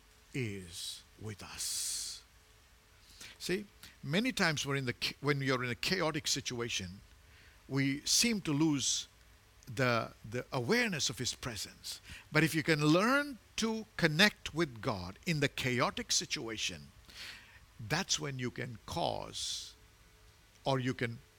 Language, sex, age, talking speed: English, male, 50-69, 130 wpm